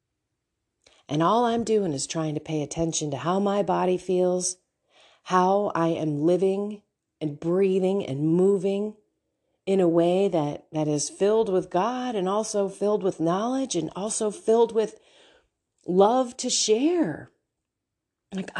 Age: 40-59